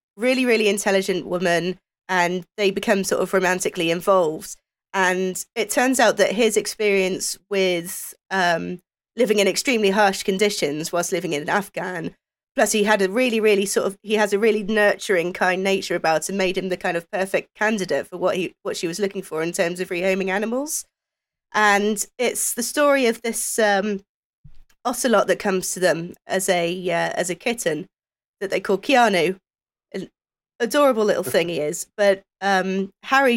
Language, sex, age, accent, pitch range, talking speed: English, female, 20-39, British, 185-225 Hz, 175 wpm